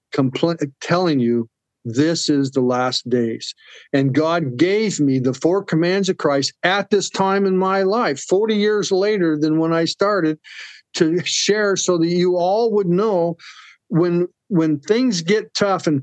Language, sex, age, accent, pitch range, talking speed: English, male, 50-69, American, 145-200 Hz, 160 wpm